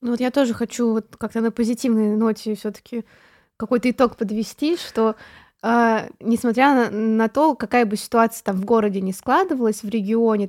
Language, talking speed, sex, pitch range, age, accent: Russian, 170 wpm, female, 215-250 Hz, 20-39, native